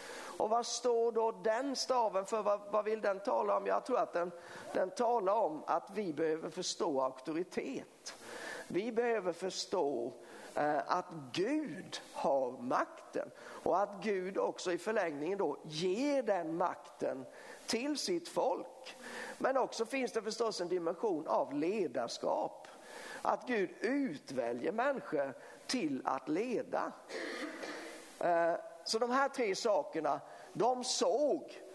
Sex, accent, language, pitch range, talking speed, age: male, native, Swedish, 180-255 Hz, 130 wpm, 50-69